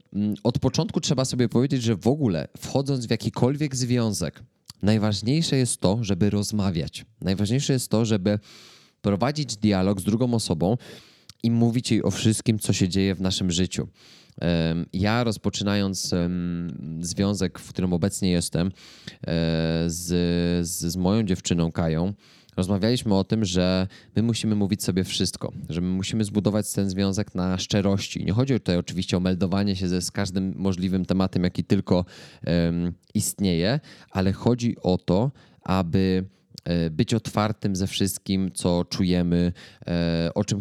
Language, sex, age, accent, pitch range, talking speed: Polish, male, 20-39, native, 90-110 Hz, 145 wpm